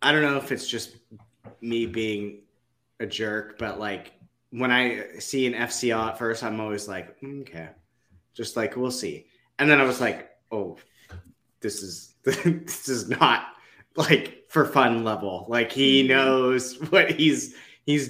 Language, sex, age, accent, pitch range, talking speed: English, male, 30-49, American, 110-135 Hz, 165 wpm